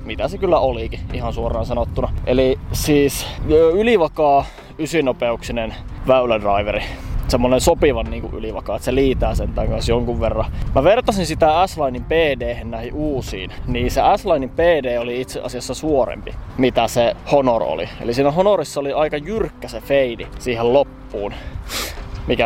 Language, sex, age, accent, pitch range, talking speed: Finnish, male, 20-39, native, 120-140 Hz, 145 wpm